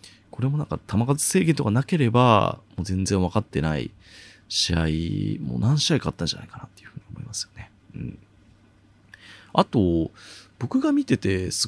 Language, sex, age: Japanese, male, 30-49